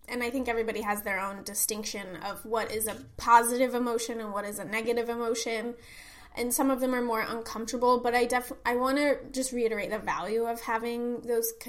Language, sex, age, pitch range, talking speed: English, female, 20-39, 220-260 Hz, 205 wpm